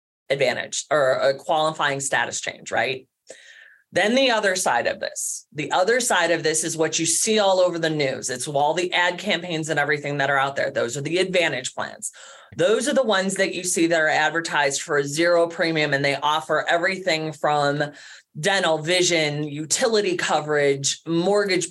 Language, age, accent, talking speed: English, 30-49, American, 180 wpm